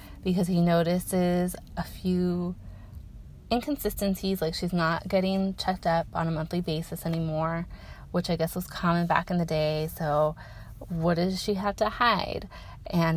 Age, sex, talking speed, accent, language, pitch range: 30-49, female, 155 wpm, American, English, 160-195 Hz